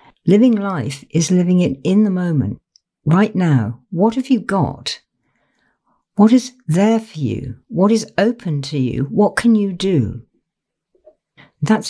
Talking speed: 145 wpm